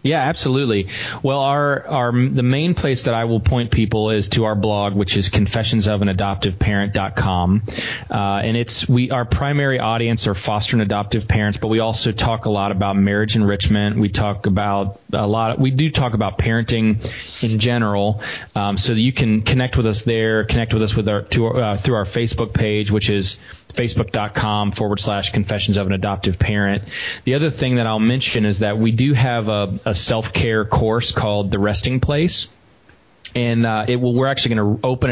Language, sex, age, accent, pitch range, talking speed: English, male, 30-49, American, 100-115 Hz, 200 wpm